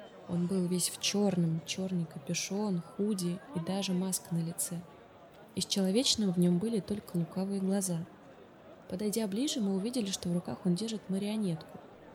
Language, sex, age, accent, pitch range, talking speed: Russian, female, 20-39, native, 175-195 Hz, 155 wpm